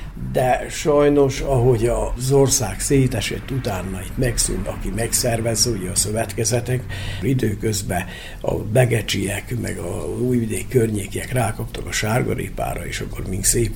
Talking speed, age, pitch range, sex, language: 120 wpm, 60-79, 100-125 Hz, male, Hungarian